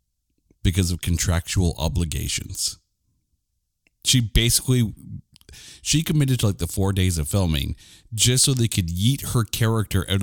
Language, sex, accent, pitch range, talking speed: English, male, American, 90-120 Hz, 135 wpm